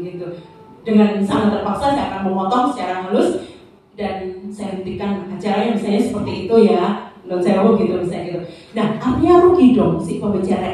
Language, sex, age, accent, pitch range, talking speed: Indonesian, female, 30-49, native, 190-225 Hz, 155 wpm